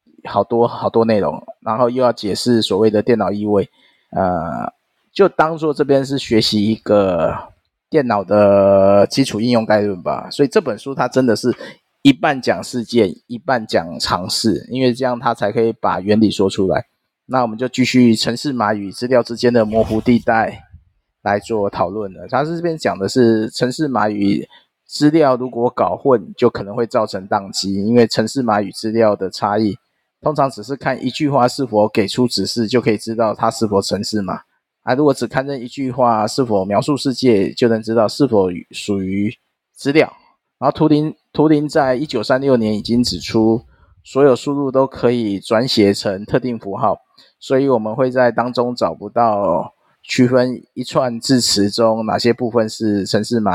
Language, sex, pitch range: Chinese, male, 105-130 Hz